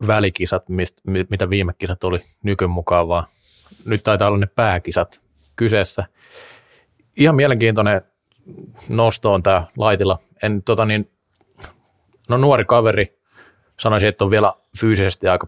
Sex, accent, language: male, native, Finnish